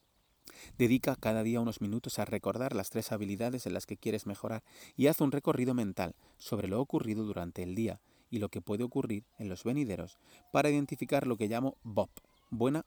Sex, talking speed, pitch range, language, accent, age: male, 190 wpm, 100-130 Hz, Spanish, Spanish, 30-49